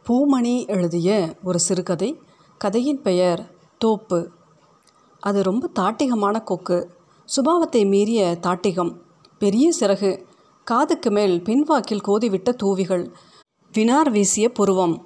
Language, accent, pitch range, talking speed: Tamil, native, 185-240 Hz, 95 wpm